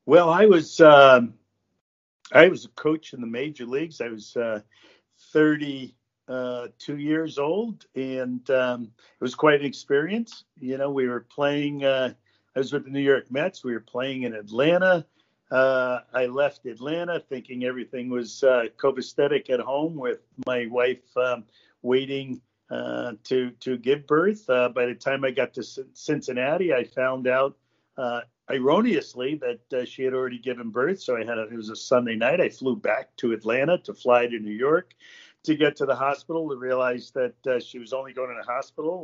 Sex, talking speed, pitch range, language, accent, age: male, 185 wpm, 120-145 Hz, English, American, 50-69